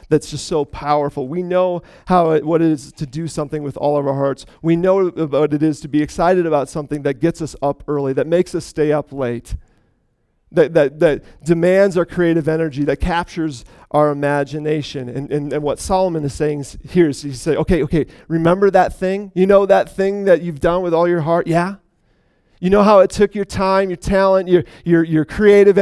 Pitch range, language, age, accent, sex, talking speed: 150-185 Hz, English, 40-59, American, male, 220 wpm